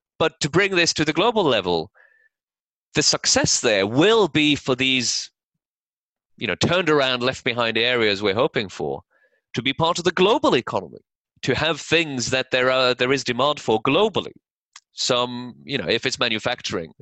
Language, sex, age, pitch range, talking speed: English, male, 30-49, 125-170 Hz, 175 wpm